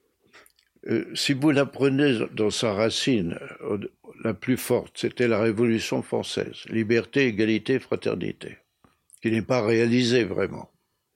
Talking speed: 125 wpm